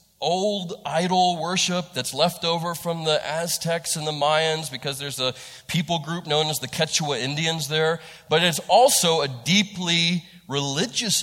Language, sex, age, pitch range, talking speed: English, male, 30-49, 150-205 Hz, 155 wpm